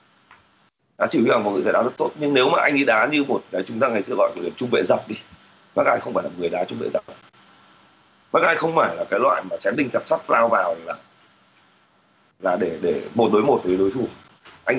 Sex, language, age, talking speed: male, Vietnamese, 30-49, 250 wpm